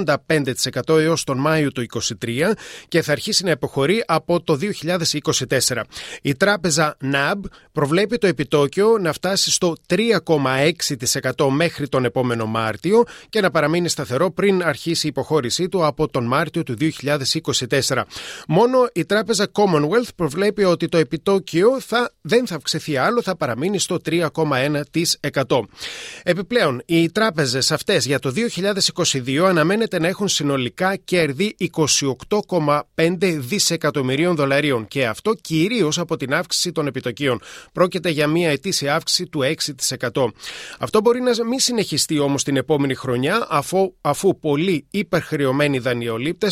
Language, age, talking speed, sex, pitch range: Greek, 30-49, 135 wpm, male, 140-185 Hz